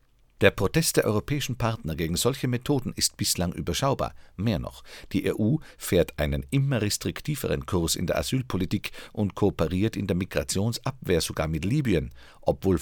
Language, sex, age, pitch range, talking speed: German, male, 50-69, 80-110 Hz, 150 wpm